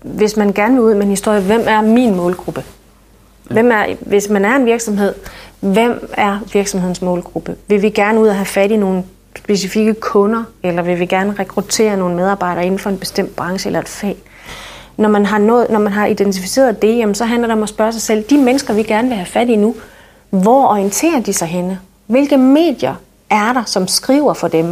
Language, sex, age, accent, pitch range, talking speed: Danish, female, 30-49, native, 190-235 Hz, 215 wpm